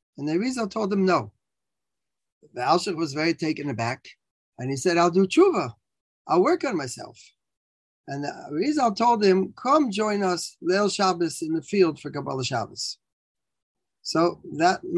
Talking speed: 160 wpm